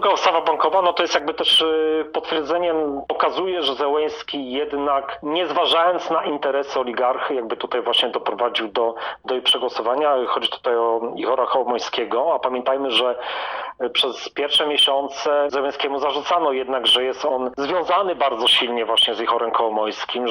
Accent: native